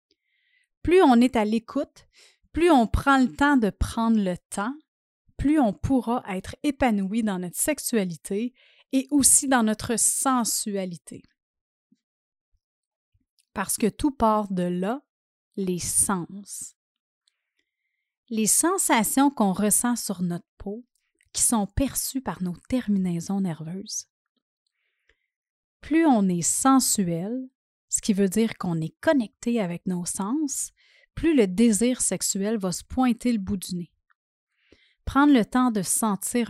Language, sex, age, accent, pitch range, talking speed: French, female, 30-49, Canadian, 195-260 Hz, 130 wpm